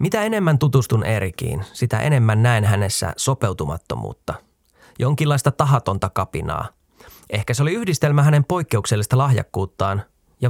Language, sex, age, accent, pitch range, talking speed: Finnish, male, 20-39, native, 105-145 Hz, 115 wpm